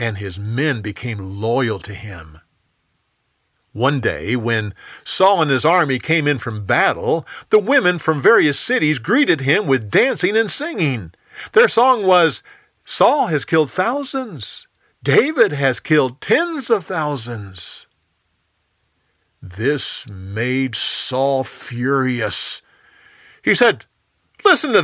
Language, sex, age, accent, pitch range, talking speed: English, male, 50-69, American, 105-180 Hz, 120 wpm